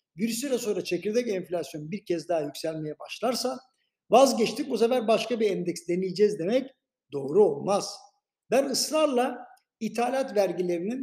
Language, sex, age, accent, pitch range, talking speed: Turkish, male, 60-79, native, 185-245 Hz, 130 wpm